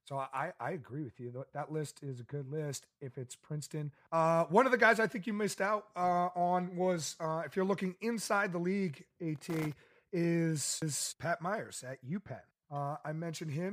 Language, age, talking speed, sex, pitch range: English, 30-49, 200 wpm, male, 150-180 Hz